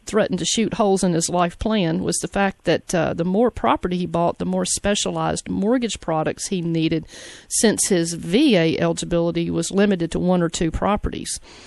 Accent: American